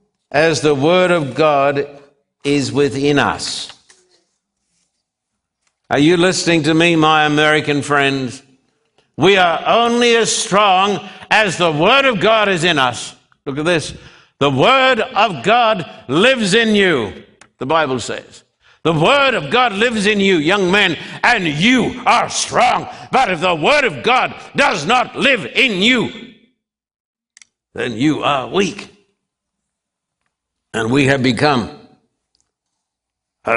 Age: 60-79